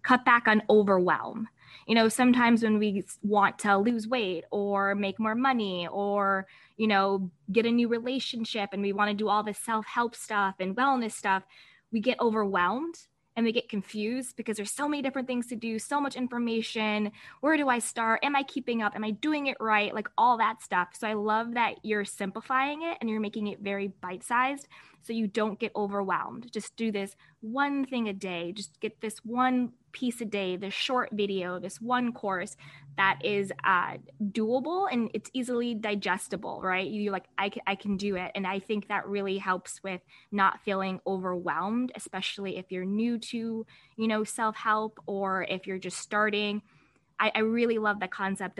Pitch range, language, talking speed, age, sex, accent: 195-235 Hz, English, 195 wpm, 20-39, female, American